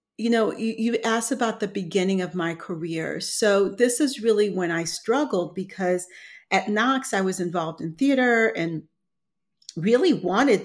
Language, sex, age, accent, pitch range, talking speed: English, female, 40-59, American, 170-205 Hz, 165 wpm